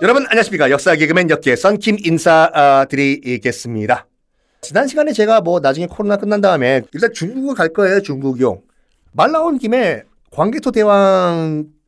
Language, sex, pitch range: Korean, male, 135-200 Hz